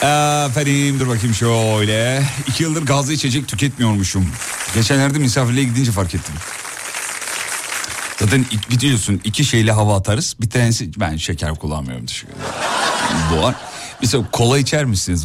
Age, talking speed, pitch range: 40-59, 120 wpm, 90-130 Hz